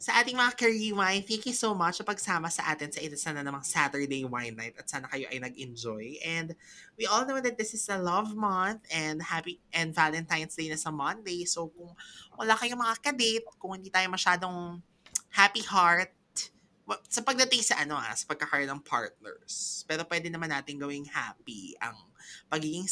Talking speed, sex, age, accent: 185 wpm, male, 20-39, native